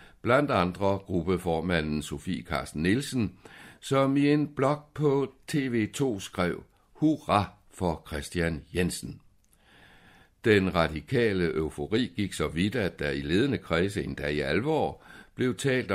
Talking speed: 125 wpm